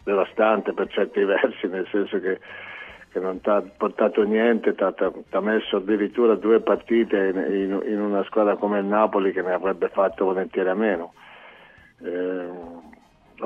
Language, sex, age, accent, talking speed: Italian, male, 50-69, native, 155 wpm